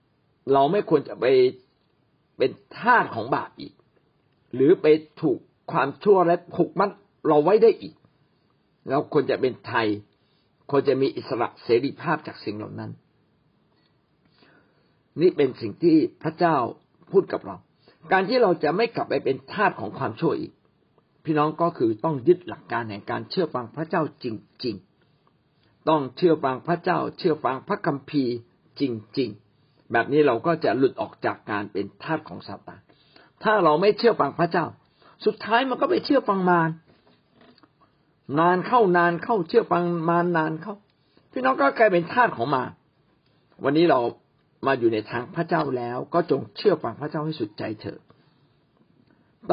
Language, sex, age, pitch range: Thai, male, 60-79, 145-205 Hz